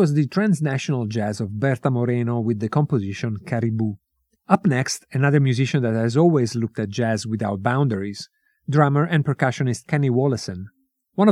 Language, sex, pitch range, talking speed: English, male, 115-150 Hz, 155 wpm